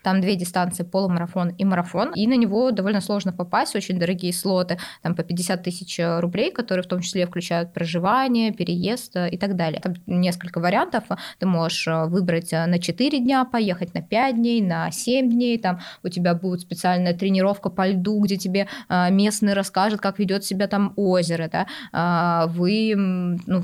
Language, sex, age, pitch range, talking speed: Russian, female, 20-39, 180-210 Hz, 170 wpm